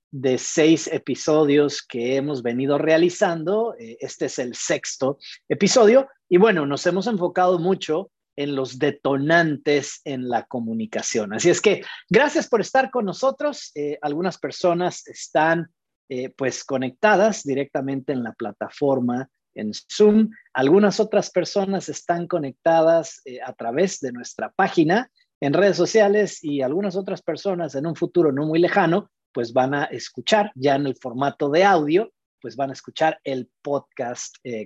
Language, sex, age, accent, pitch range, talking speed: Spanish, male, 40-59, Mexican, 140-200 Hz, 150 wpm